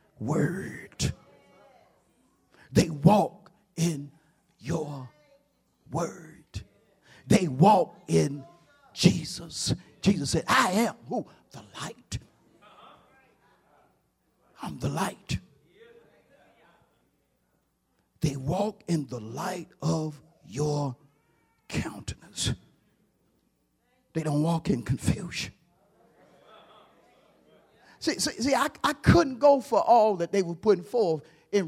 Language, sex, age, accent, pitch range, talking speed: English, male, 50-69, American, 165-275 Hz, 90 wpm